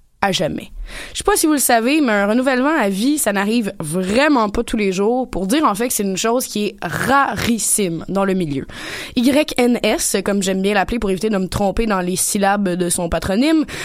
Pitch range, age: 195-265 Hz, 20-39